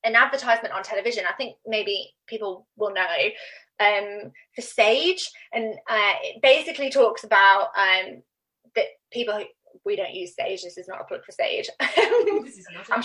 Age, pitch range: 20-39, 210-275 Hz